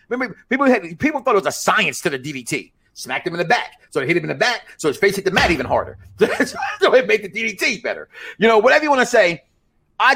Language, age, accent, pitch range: English, 40-59, American, 175-280 Hz